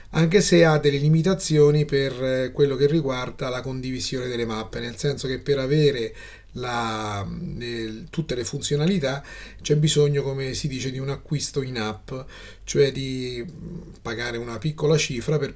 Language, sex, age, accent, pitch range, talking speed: Italian, male, 30-49, native, 120-150 Hz, 145 wpm